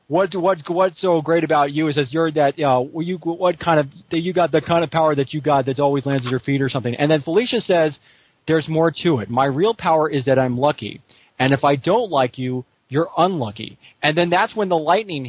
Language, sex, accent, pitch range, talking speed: English, male, American, 145-190 Hz, 245 wpm